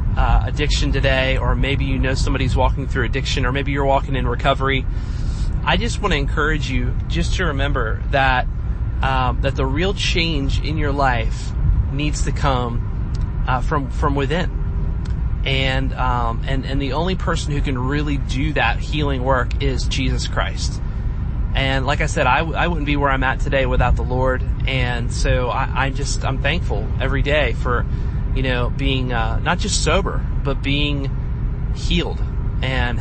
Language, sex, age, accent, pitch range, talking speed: English, male, 30-49, American, 120-135 Hz, 175 wpm